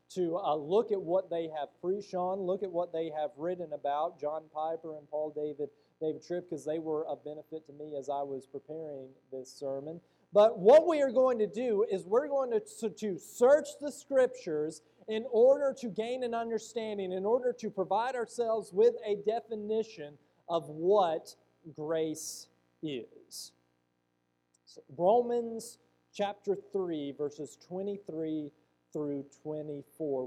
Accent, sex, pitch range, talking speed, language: American, male, 150-225 Hz, 155 wpm, English